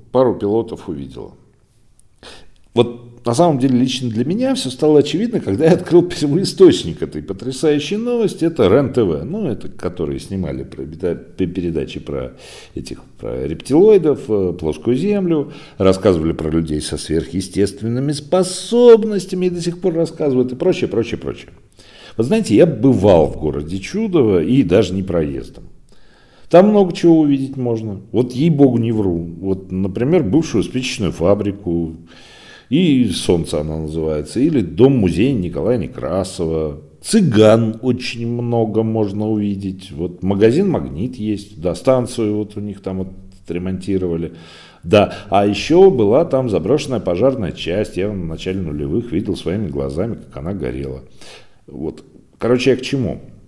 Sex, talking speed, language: male, 135 wpm, Russian